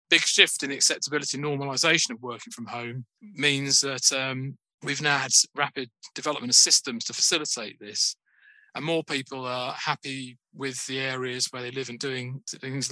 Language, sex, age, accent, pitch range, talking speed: English, male, 20-39, British, 125-140 Hz, 170 wpm